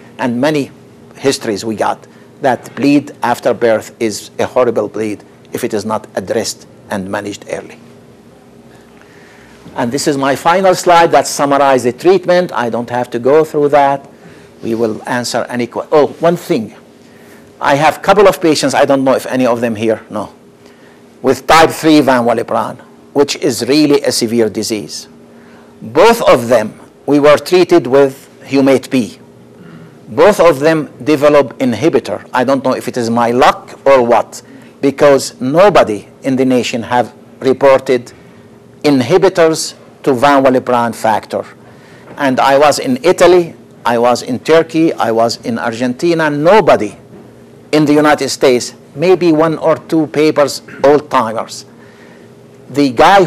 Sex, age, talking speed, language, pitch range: male, 60-79, 150 wpm, English, 120-155 Hz